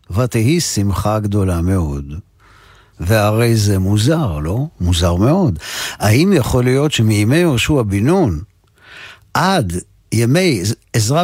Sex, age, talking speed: male, 50-69, 105 wpm